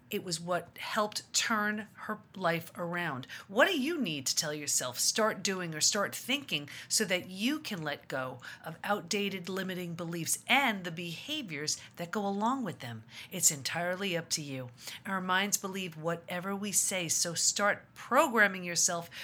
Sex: female